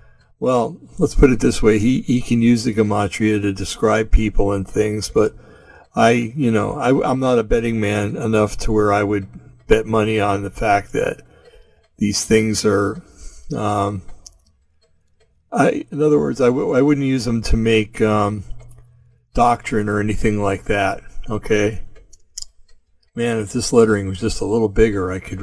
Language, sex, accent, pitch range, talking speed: English, male, American, 100-115 Hz, 170 wpm